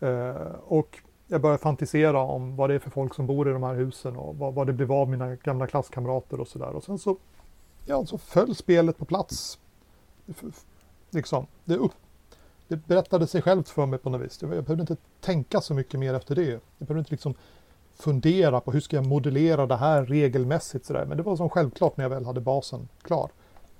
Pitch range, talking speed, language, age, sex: 125-165 Hz, 210 wpm, Swedish, 40-59, male